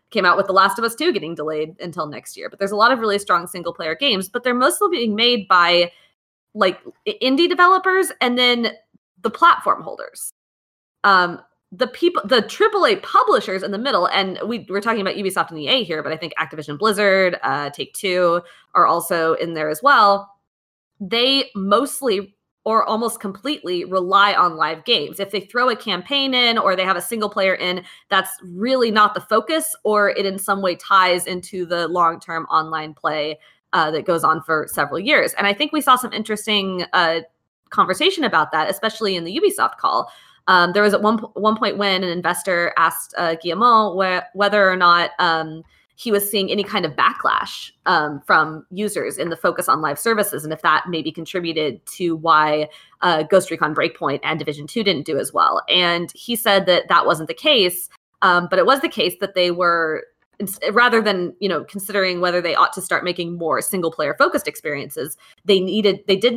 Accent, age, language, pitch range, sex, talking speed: American, 20-39, English, 170-220 Hz, female, 195 wpm